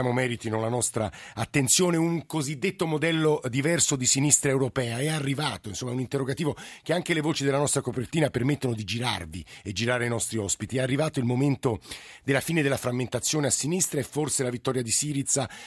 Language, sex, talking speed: Italian, male, 185 wpm